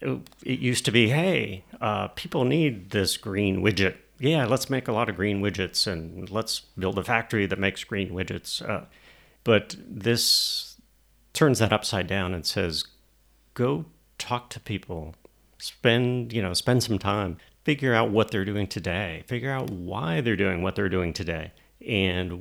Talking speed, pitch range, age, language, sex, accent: 170 wpm, 90-115 Hz, 50-69, English, male, American